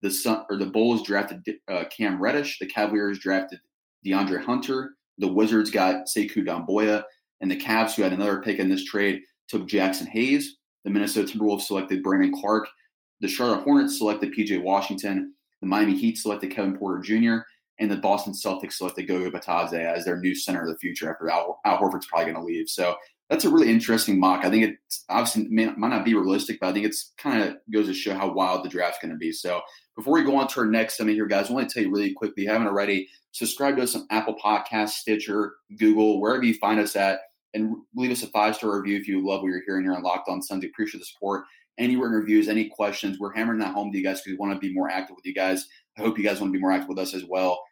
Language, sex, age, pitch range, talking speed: English, male, 20-39, 95-110 Hz, 240 wpm